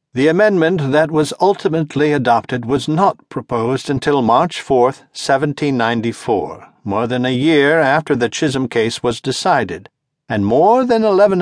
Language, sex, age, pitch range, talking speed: English, male, 60-79, 115-150 Hz, 140 wpm